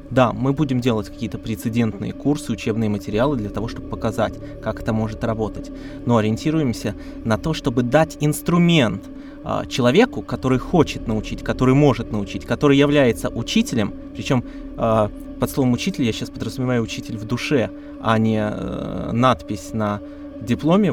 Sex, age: male, 20-39